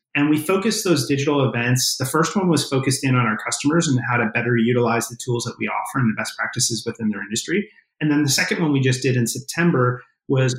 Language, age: English, 30-49